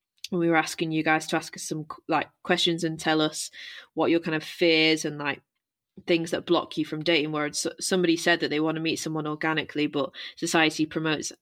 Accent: British